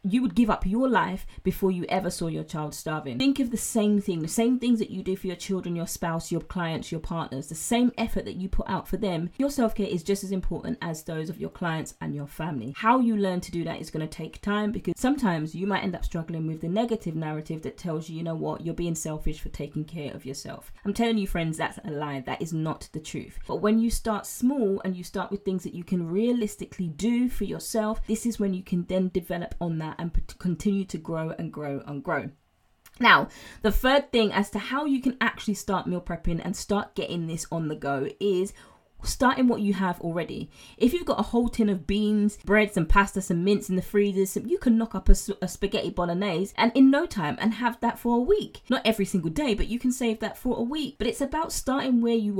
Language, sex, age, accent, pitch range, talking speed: English, female, 20-39, British, 175-225 Hz, 245 wpm